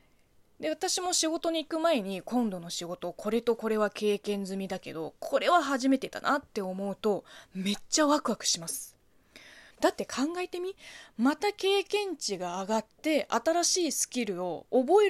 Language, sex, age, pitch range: Japanese, female, 20-39, 195-295 Hz